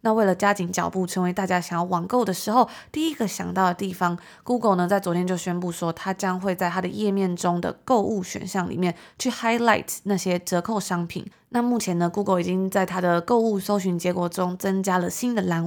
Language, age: Chinese, 20-39